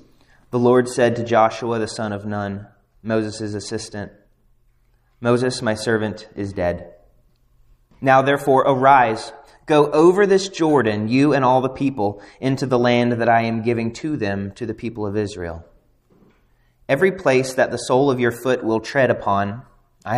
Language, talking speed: English, 160 wpm